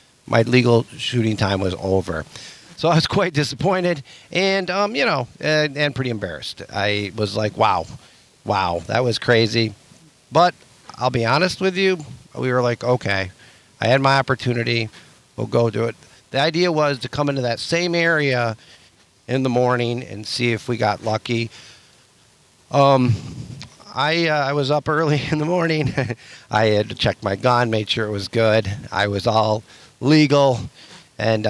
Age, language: 50-69, English